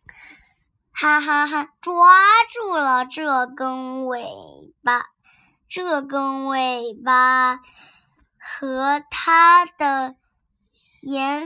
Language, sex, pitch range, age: Chinese, male, 260-340 Hz, 10-29